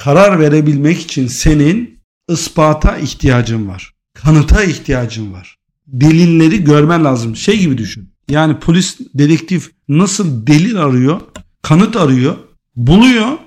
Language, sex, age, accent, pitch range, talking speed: Turkish, male, 50-69, native, 145-185 Hz, 110 wpm